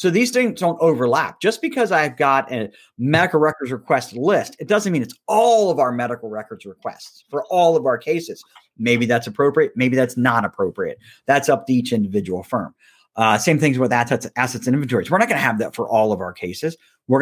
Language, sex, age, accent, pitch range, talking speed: English, male, 40-59, American, 120-170 Hz, 215 wpm